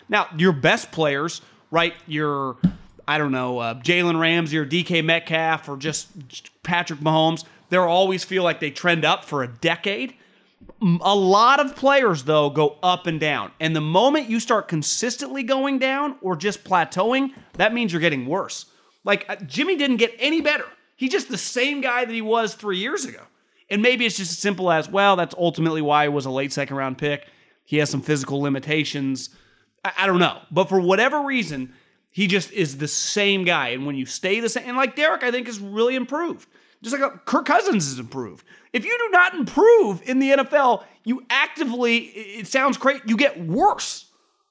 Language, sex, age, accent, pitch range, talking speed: English, male, 30-49, American, 155-245 Hz, 195 wpm